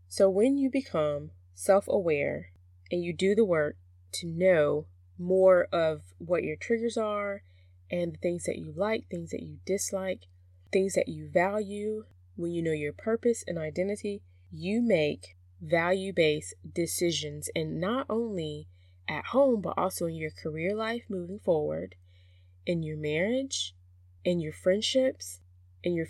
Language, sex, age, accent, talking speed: English, female, 20-39, American, 145 wpm